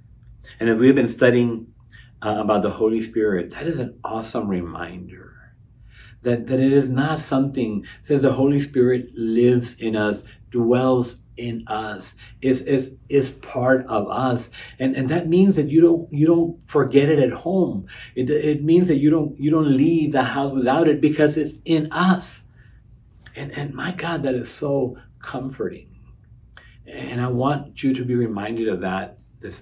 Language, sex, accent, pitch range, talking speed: English, male, American, 100-130 Hz, 165 wpm